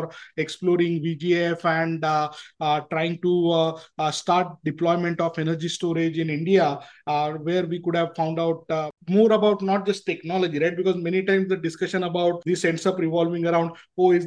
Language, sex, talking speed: English, male, 180 wpm